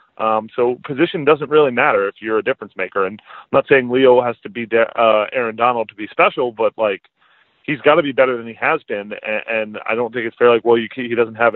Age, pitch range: 30-49, 110-130 Hz